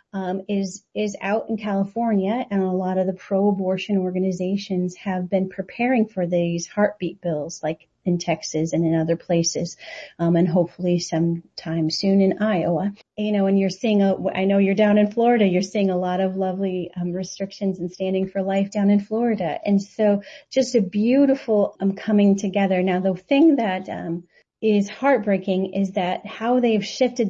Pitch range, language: 185-215 Hz, English